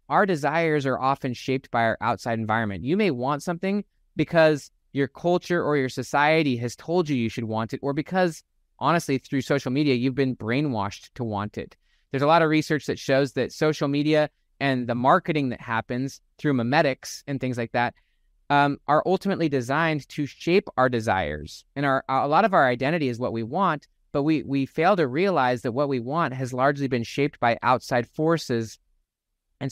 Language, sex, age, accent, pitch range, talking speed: English, male, 20-39, American, 125-155 Hz, 195 wpm